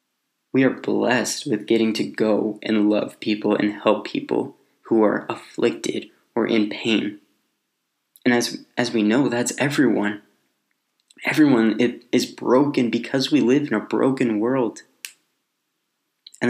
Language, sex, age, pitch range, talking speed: English, male, 20-39, 110-135 Hz, 135 wpm